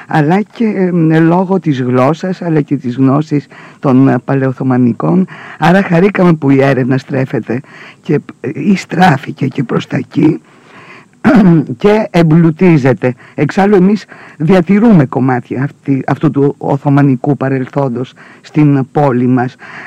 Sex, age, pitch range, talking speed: female, 50-69, 135-170 Hz, 110 wpm